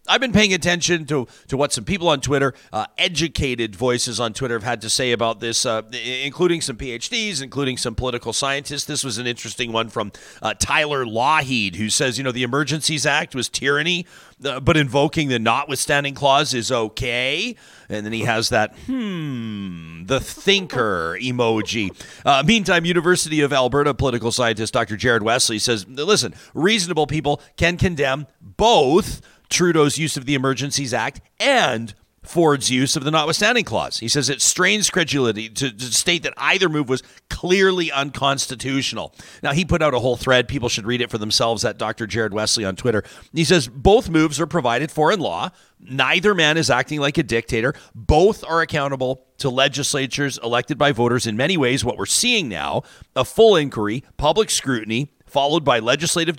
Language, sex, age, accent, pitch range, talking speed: English, male, 40-59, American, 120-155 Hz, 180 wpm